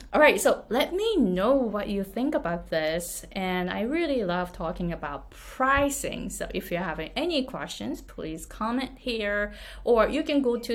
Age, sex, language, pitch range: 20-39, female, Japanese, 170-230 Hz